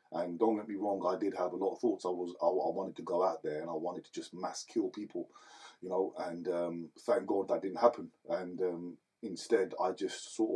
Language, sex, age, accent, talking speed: English, male, 30-49, British, 250 wpm